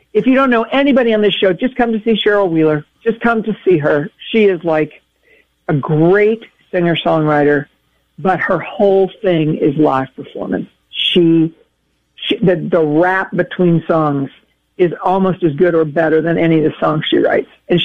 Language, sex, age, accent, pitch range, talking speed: English, female, 50-69, American, 160-195 Hz, 180 wpm